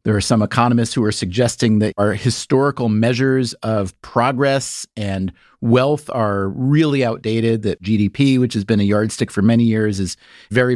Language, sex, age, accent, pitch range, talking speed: English, male, 40-59, American, 110-140 Hz, 165 wpm